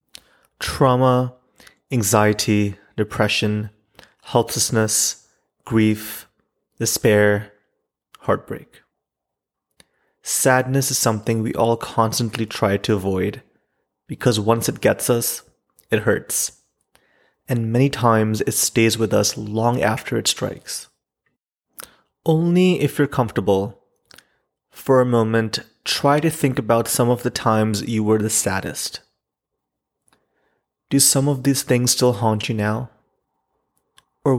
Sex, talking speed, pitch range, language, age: male, 110 wpm, 110-130 Hz, English, 30-49